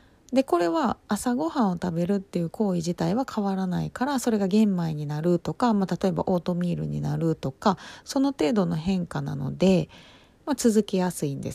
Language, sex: Japanese, female